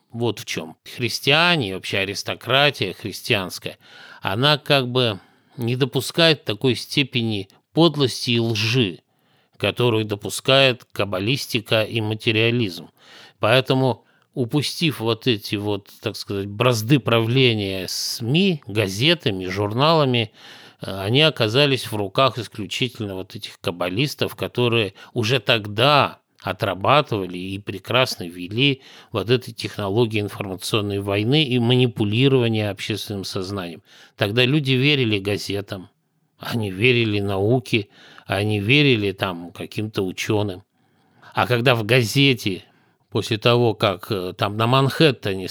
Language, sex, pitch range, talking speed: Russian, male, 100-130 Hz, 105 wpm